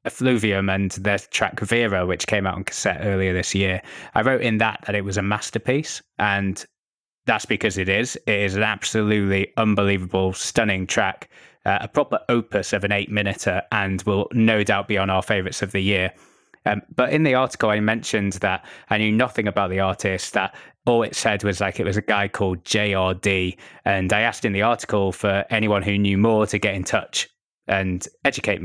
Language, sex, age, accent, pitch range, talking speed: English, male, 20-39, British, 100-115 Hz, 200 wpm